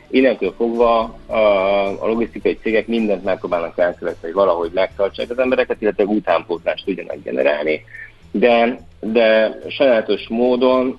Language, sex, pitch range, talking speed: Hungarian, male, 90-115 Hz, 115 wpm